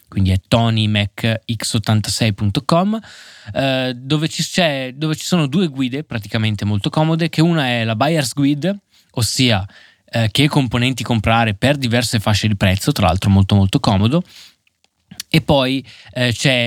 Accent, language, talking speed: native, Italian, 135 wpm